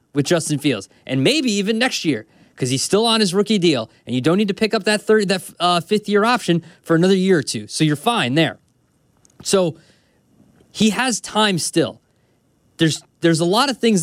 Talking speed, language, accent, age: 210 wpm, English, American, 20-39